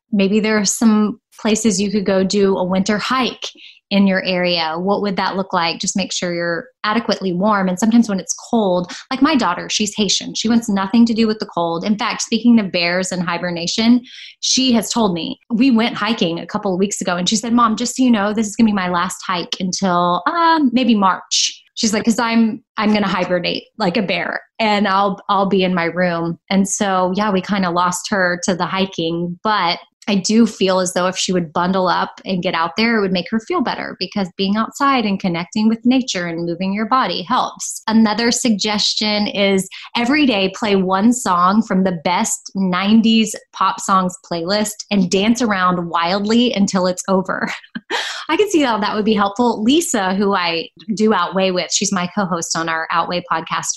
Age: 20-39